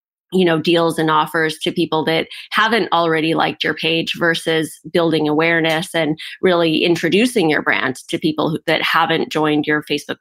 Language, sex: English, female